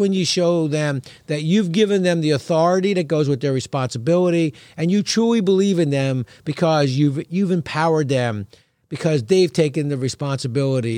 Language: English